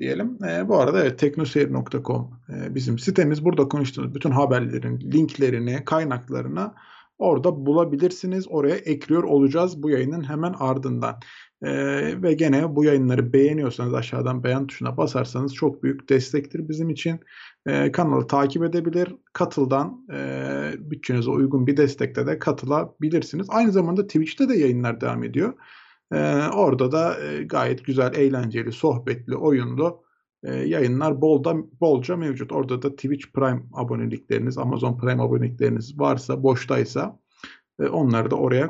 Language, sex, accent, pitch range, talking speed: Turkish, male, native, 125-150 Hz, 130 wpm